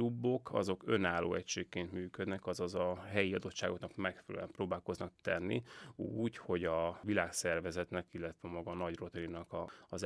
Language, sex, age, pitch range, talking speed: Hungarian, male, 30-49, 90-95 Hz, 125 wpm